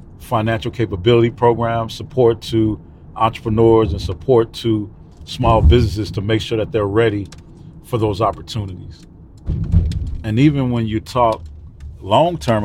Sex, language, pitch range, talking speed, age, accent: male, English, 100-115 Hz, 125 wpm, 40-59, American